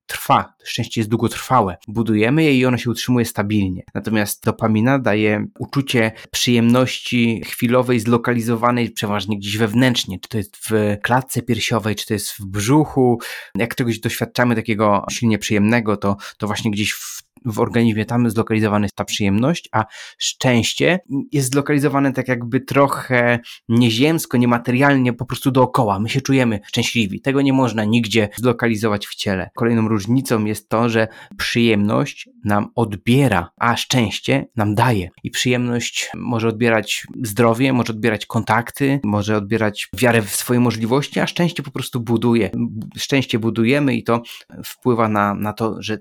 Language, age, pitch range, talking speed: Polish, 20-39, 110-125 Hz, 145 wpm